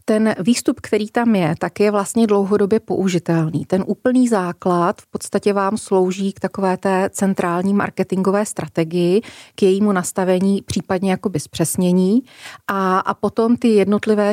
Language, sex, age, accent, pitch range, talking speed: Czech, female, 30-49, native, 180-210 Hz, 145 wpm